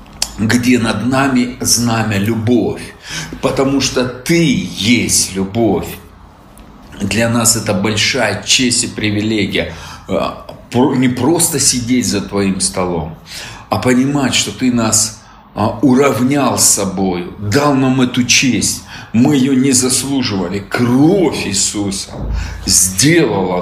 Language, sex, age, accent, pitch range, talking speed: Russian, male, 40-59, native, 105-140 Hz, 105 wpm